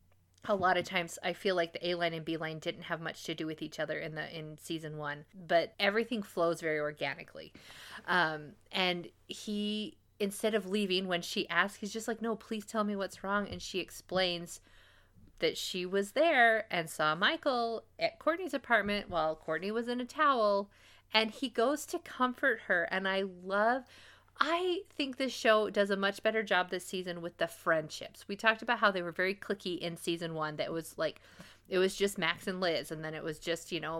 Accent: American